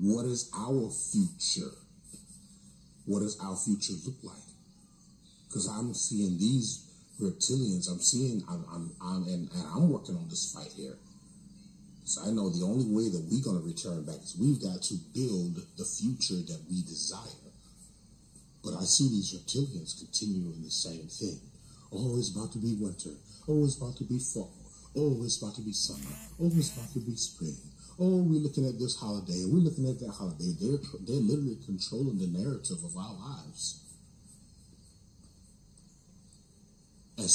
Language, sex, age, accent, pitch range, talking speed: English, male, 40-59, American, 110-175 Hz, 165 wpm